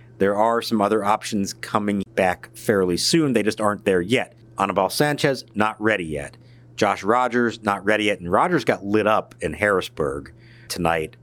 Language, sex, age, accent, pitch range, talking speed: English, male, 50-69, American, 95-120 Hz, 170 wpm